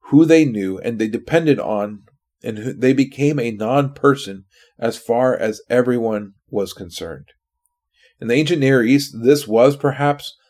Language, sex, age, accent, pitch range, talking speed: English, male, 30-49, American, 120-150 Hz, 150 wpm